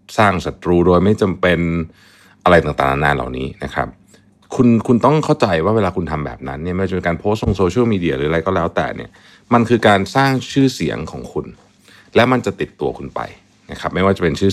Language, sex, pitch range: Thai, male, 85-110 Hz